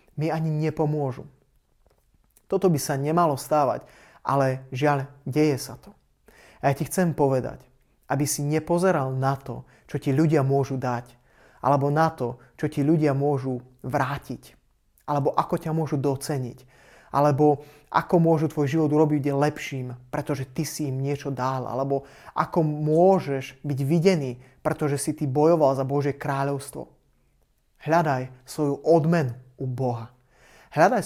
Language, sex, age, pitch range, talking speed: Slovak, male, 30-49, 130-155 Hz, 140 wpm